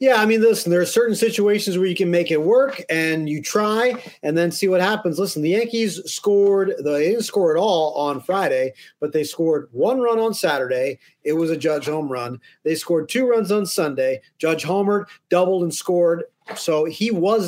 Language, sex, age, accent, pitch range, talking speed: English, male, 40-59, American, 160-215 Hz, 205 wpm